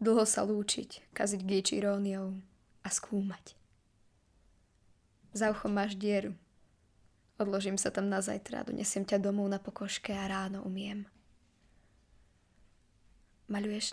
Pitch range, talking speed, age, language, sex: 190-215 Hz, 110 wpm, 20-39, Slovak, female